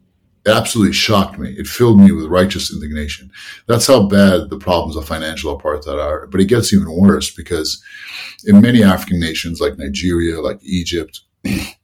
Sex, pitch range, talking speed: male, 85-100 Hz, 165 wpm